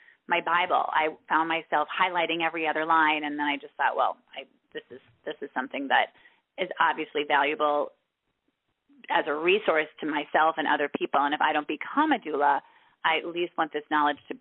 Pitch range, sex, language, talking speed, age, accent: 150-185 Hz, female, English, 195 wpm, 30-49, American